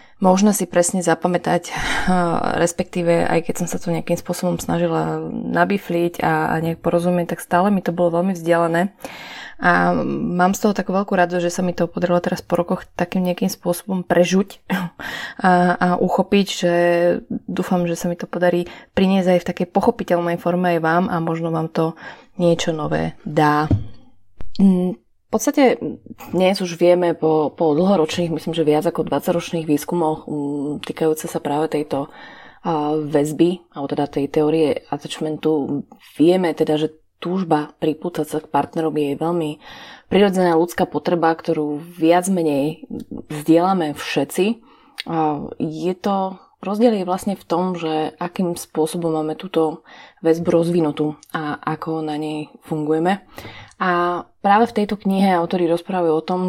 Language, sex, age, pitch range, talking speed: Slovak, female, 20-39, 160-180 Hz, 150 wpm